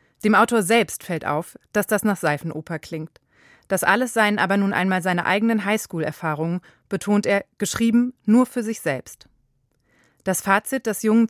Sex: female